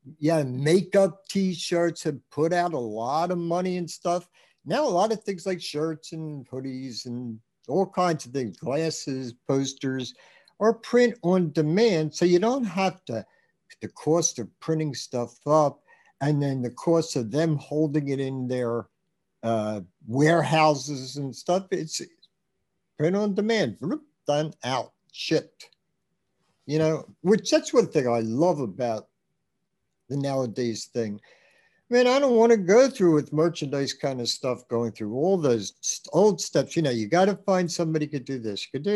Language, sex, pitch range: English, male, 135-195 Hz